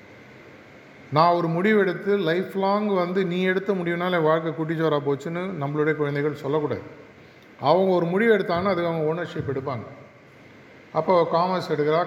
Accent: native